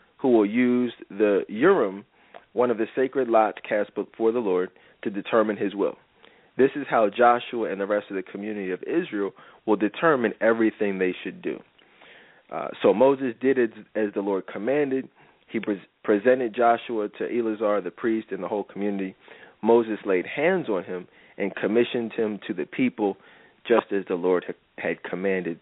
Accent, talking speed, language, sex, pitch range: American, 175 wpm, English, male, 105-125 Hz